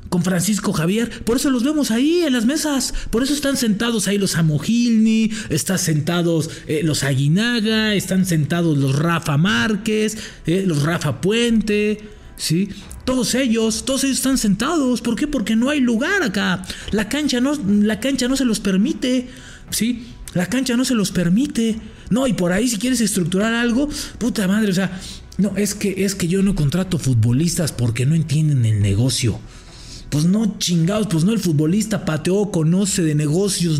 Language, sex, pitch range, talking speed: English, male, 150-215 Hz, 175 wpm